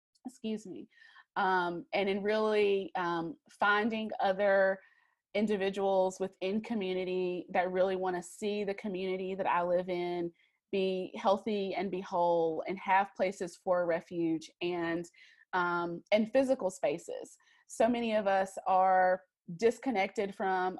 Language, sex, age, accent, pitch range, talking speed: English, female, 20-39, American, 175-200 Hz, 130 wpm